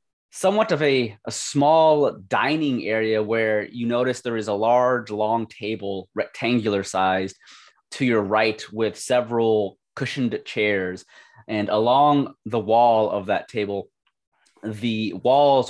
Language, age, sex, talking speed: English, 20-39, male, 130 wpm